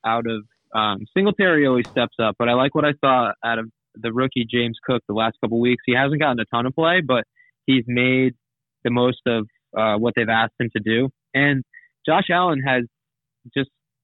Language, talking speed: English, 205 wpm